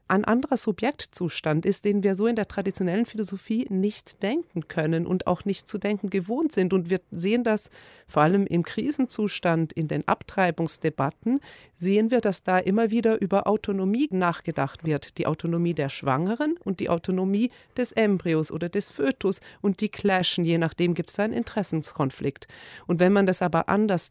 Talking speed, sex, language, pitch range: 175 wpm, female, German, 165-215 Hz